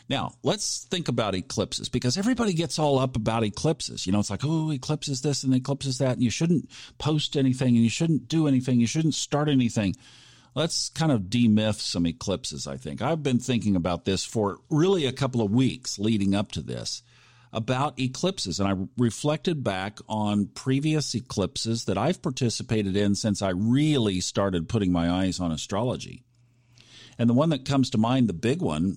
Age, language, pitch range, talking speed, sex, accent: 50-69, English, 100-135 Hz, 190 wpm, male, American